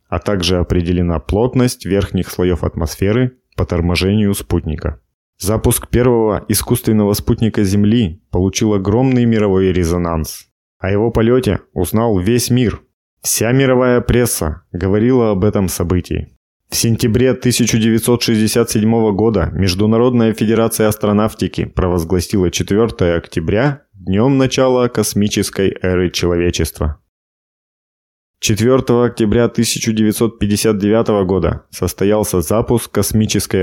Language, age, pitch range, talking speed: Russian, 20-39, 90-115 Hz, 95 wpm